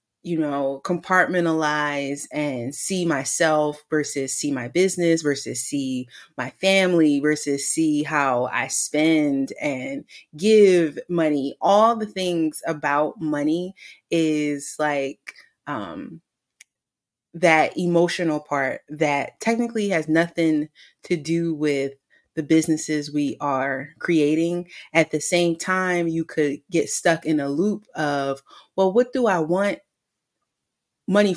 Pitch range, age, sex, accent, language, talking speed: 145-180 Hz, 30-49, female, American, English, 120 wpm